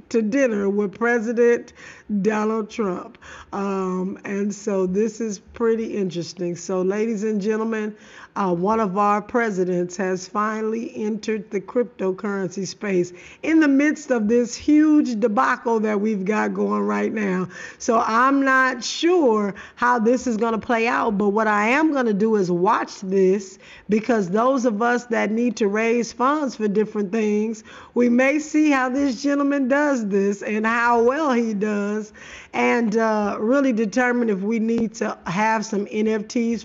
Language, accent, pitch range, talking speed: English, American, 195-240 Hz, 160 wpm